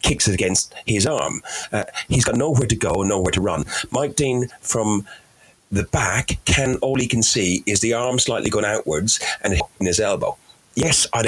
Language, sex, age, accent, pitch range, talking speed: English, male, 40-59, British, 90-115 Hz, 195 wpm